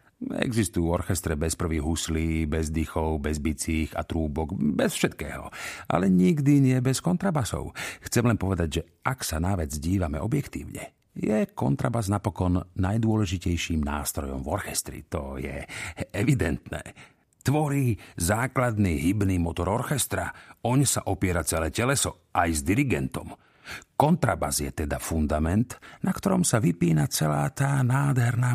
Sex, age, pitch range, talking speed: male, 50-69, 85-120 Hz, 130 wpm